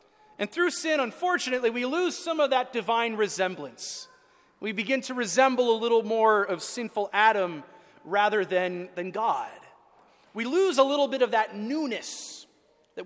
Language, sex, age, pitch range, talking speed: English, male, 30-49, 220-290 Hz, 155 wpm